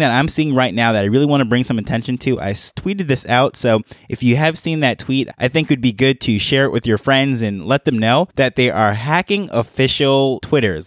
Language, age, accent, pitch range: English, 20-39, American, 110-135 Hz